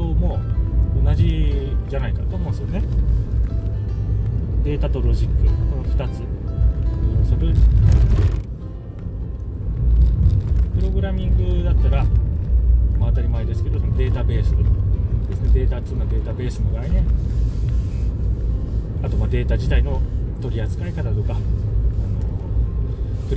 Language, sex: Japanese, male